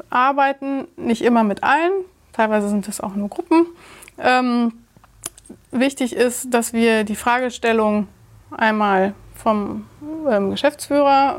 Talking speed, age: 115 wpm, 20-39